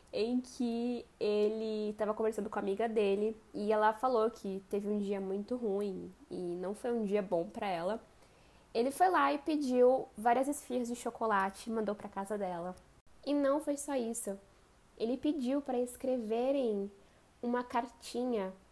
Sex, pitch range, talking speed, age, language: female, 200-250 Hz, 165 wpm, 10-29, Portuguese